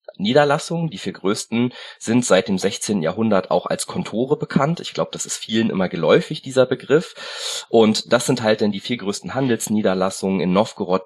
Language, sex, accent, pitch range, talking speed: German, male, German, 100-140 Hz, 180 wpm